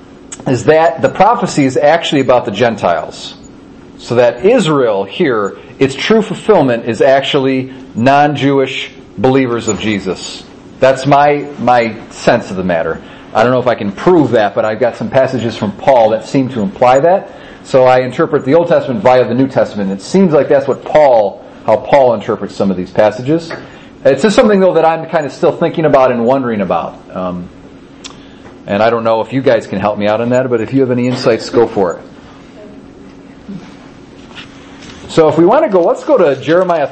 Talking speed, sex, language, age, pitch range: 195 wpm, male, English, 40-59, 115-155 Hz